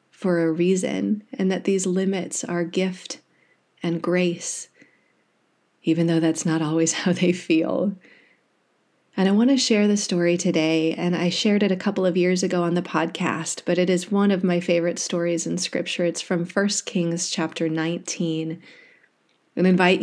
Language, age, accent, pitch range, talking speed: English, 30-49, American, 170-195 Hz, 170 wpm